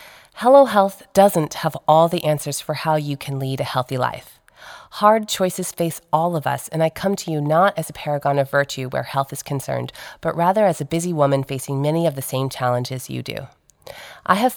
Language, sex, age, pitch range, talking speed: English, female, 30-49, 135-170 Hz, 215 wpm